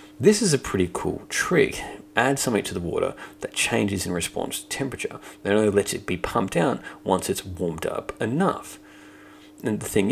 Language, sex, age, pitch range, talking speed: English, male, 30-49, 95-125 Hz, 190 wpm